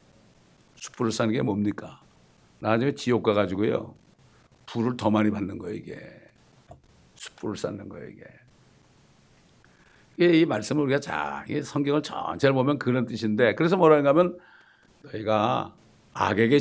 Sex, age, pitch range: male, 60-79, 130-185 Hz